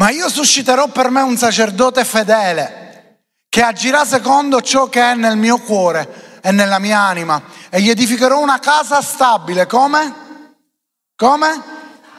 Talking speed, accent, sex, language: 145 wpm, native, male, Italian